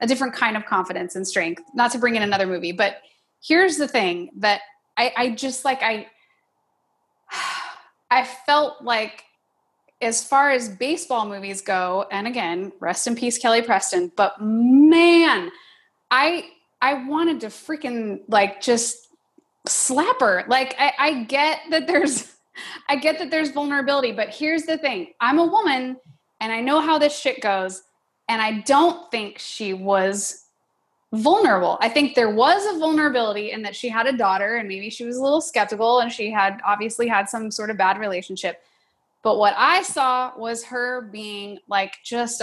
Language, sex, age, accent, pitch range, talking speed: English, female, 20-39, American, 210-295 Hz, 170 wpm